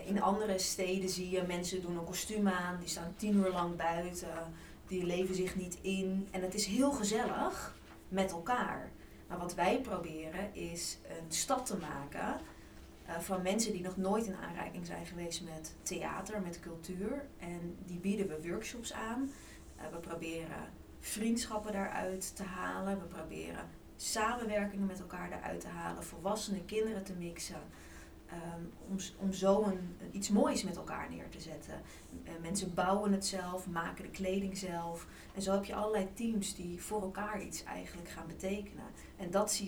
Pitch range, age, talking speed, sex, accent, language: 175-205 Hz, 20-39, 165 wpm, female, Dutch, Dutch